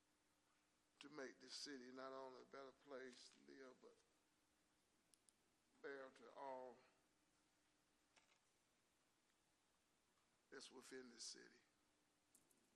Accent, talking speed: American, 90 wpm